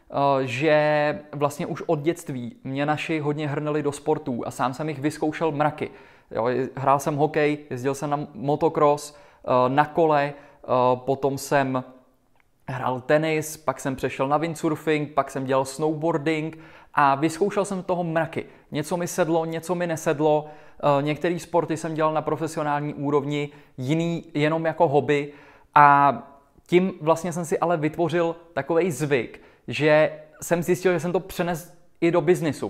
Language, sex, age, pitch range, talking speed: Czech, male, 20-39, 135-155 Hz, 150 wpm